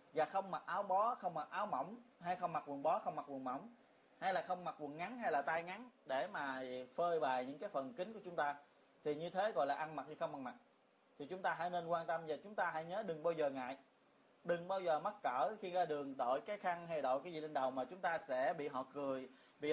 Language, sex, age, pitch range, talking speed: Vietnamese, male, 20-39, 150-200 Hz, 275 wpm